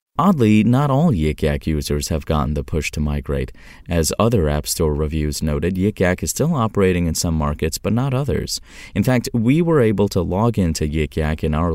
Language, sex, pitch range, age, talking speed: English, male, 75-105 Hz, 30-49, 195 wpm